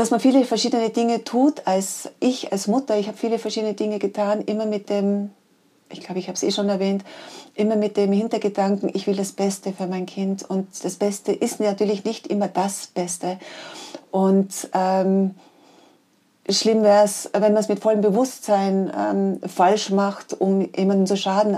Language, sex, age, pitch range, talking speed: German, female, 40-59, 185-215 Hz, 180 wpm